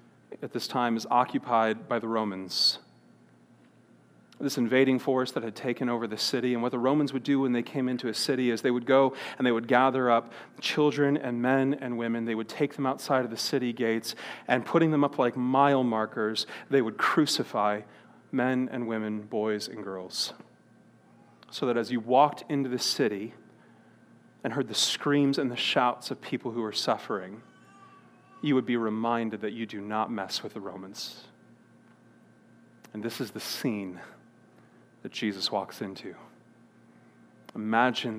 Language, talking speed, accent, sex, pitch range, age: English, 175 wpm, American, male, 110-130 Hz, 30-49